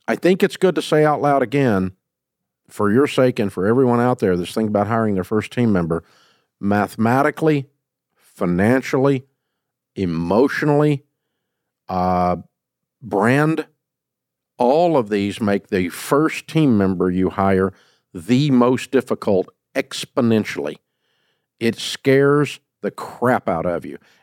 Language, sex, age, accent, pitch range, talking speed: English, male, 50-69, American, 110-145 Hz, 125 wpm